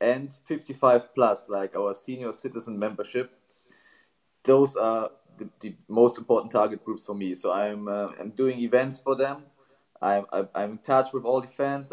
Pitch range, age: 105-130 Hz, 20-39